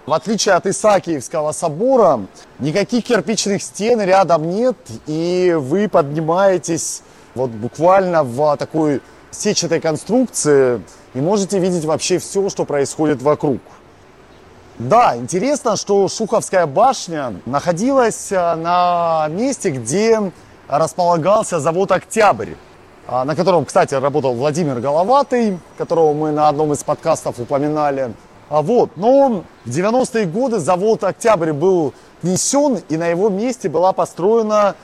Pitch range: 150-210 Hz